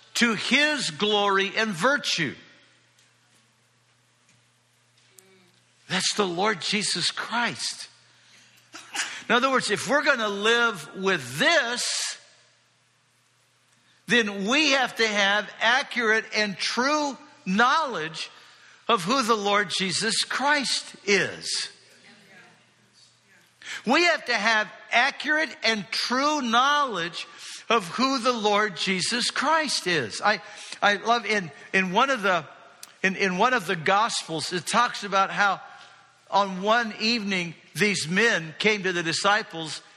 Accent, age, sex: American, 60-79, male